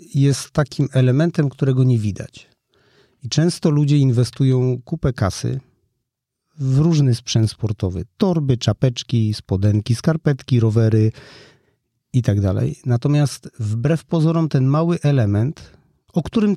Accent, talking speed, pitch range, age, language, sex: native, 110 wpm, 120-160 Hz, 40-59, Polish, male